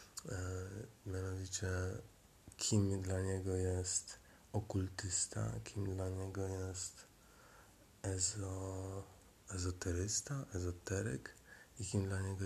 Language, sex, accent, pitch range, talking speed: Polish, male, native, 95-100 Hz, 75 wpm